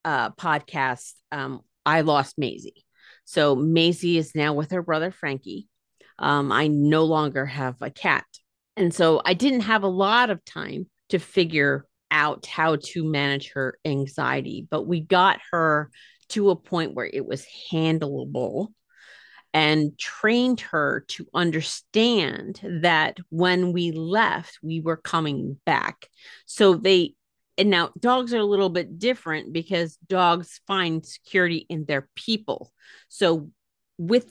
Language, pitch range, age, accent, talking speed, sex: English, 155-195 Hz, 40-59, American, 140 wpm, female